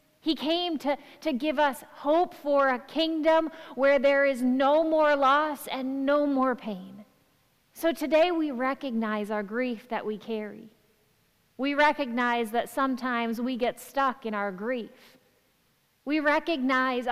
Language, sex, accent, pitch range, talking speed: English, female, American, 235-285 Hz, 145 wpm